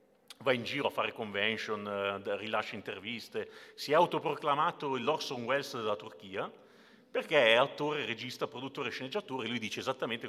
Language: Italian